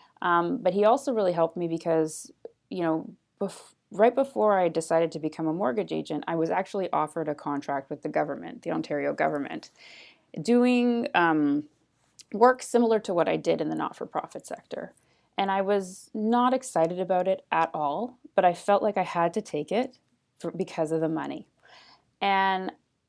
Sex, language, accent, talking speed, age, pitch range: female, English, American, 175 wpm, 20-39, 165-275 Hz